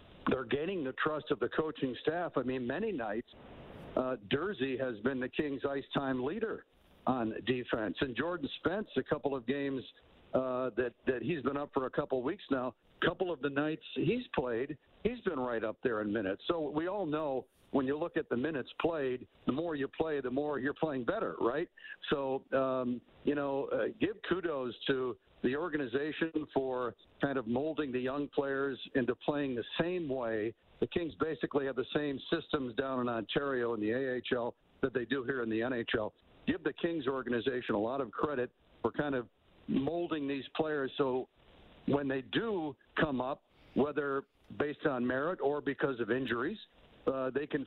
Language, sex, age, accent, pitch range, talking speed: English, male, 60-79, American, 125-150 Hz, 190 wpm